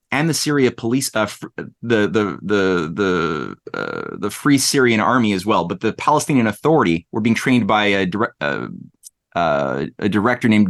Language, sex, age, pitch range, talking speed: English, male, 30-49, 105-125 Hz, 180 wpm